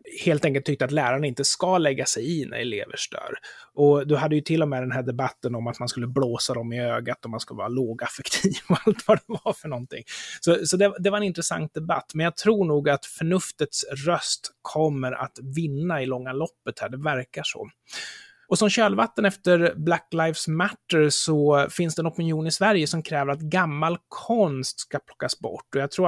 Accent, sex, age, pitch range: native, male, 30-49, 135-180 Hz